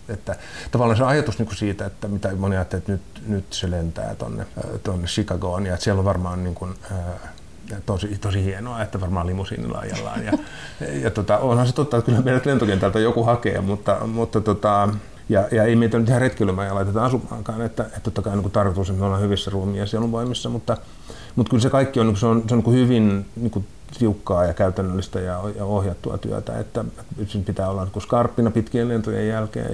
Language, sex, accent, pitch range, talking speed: Finnish, male, native, 95-115 Hz, 190 wpm